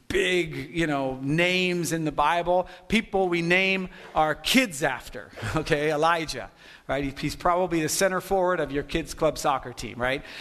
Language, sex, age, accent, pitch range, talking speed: English, male, 50-69, American, 150-205 Hz, 160 wpm